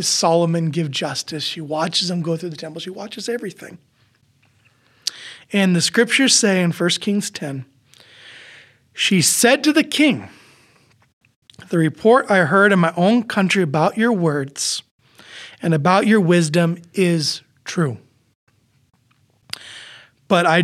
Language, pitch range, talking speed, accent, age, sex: English, 135-185 Hz, 130 wpm, American, 30-49, male